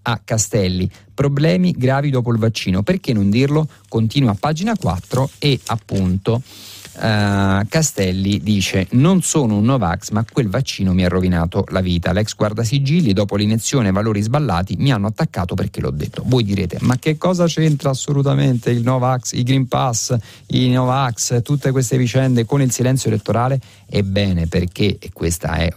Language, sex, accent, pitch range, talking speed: Italian, male, native, 95-125 Hz, 165 wpm